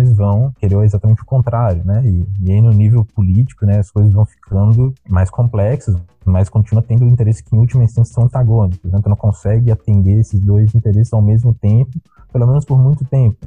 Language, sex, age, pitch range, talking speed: Portuguese, male, 20-39, 100-115 Hz, 200 wpm